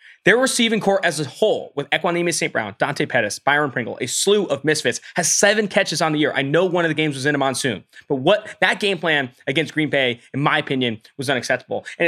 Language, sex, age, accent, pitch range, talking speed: English, male, 20-39, American, 145-200 Hz, 240 wpm